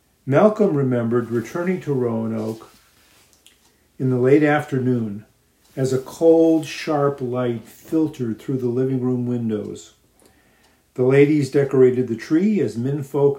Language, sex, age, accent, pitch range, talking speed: English, male, 50-69, American, 120-140 Hz, 125 wpm